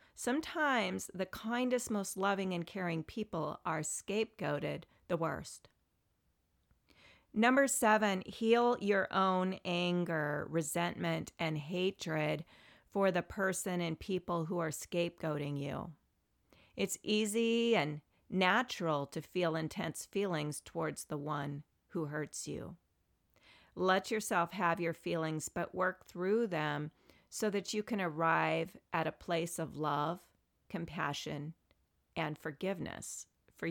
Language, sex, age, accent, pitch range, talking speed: English, female, 40-59, American, 160-200 Hz, 120 wpm